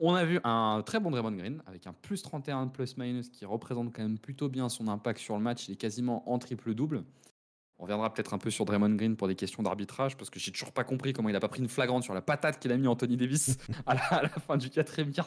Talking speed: 275 wpm